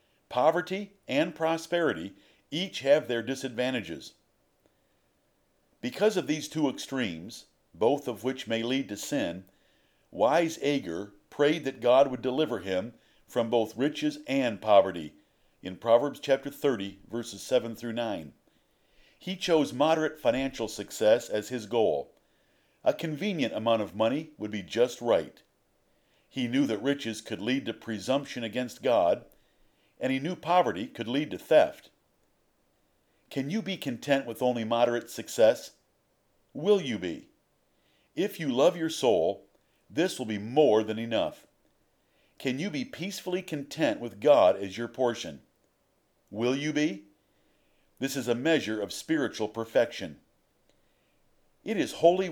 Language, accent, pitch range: English, American, 110-160 Hz